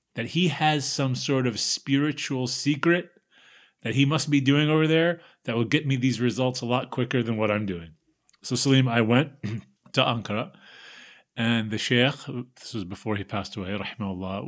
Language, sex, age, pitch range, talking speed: English, male, 30-49, 110-135 Hz, 180 wpm